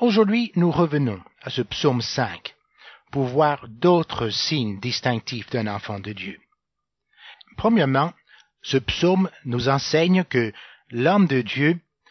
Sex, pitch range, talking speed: male, 125-170 Hz, 125 wpm